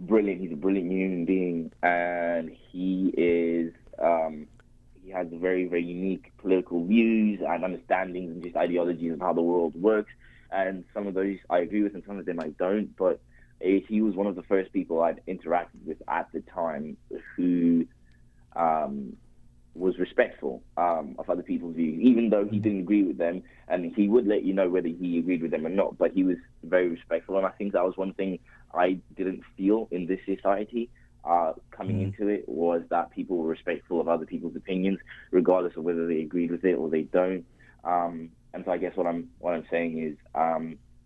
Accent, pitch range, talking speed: British, 85-95 Hz, 200 wpm